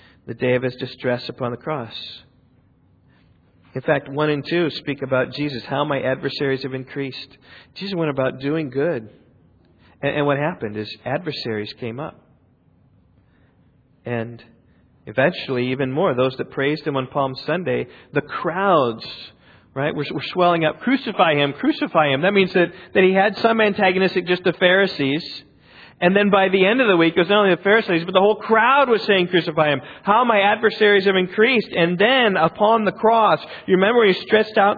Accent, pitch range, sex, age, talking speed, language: American, 140-220 Hz, male, 40-59, 175 wpm, English